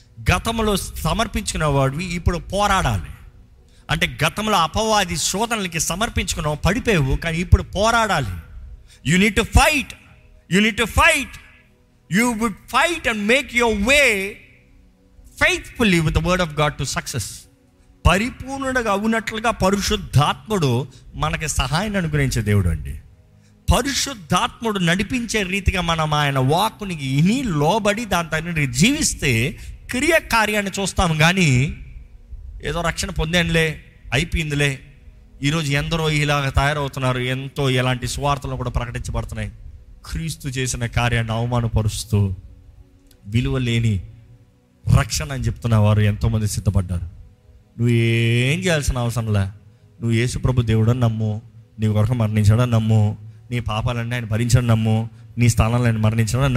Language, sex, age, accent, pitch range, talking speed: Telugu, male, 50-69, native, 115-185 Hz, 100 wpm